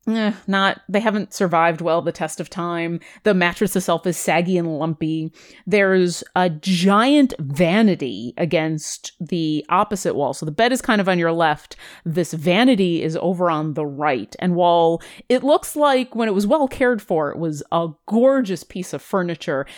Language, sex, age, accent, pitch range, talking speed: English, female, 30-49, American, 165-220 Hz, 180 wpm